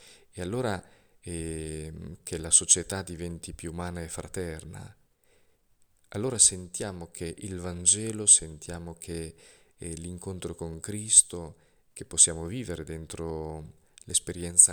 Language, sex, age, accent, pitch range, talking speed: Italian, male, 40-59, native, 85-105 Hz, 110 wpm